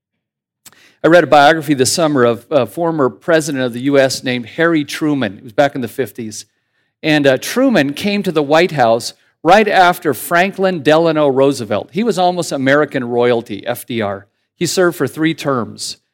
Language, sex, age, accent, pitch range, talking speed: English, male, 50-69, American, 125-180 Hz, 170 wpm